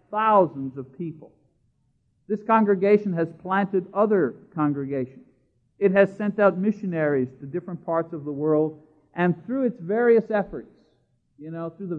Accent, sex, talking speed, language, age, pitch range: American, male, 145 wpm, English, 50-69, 140-195 Hz